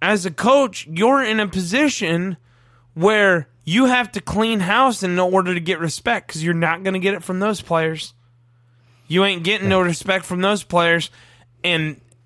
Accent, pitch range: American, 130-205 Hz